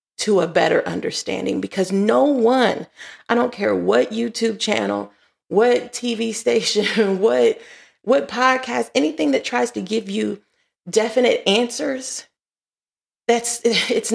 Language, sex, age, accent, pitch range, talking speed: English, female, 30-49, American, 185-240 Hz, 125 wpm